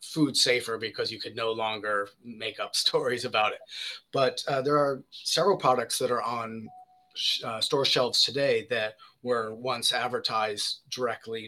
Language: English